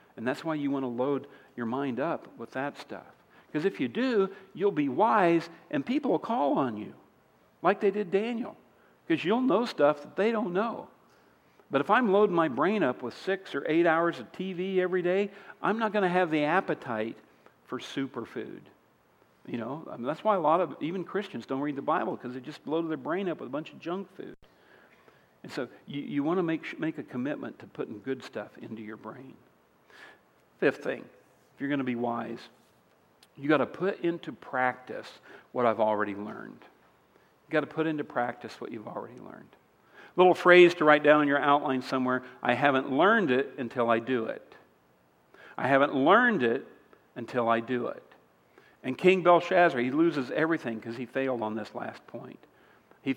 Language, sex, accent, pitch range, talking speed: English, male, American, 125-185 Hz, 200 wpm